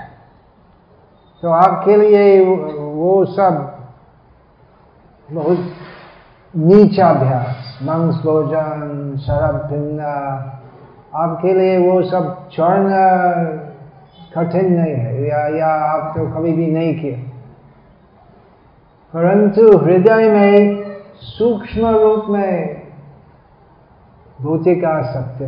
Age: 50-69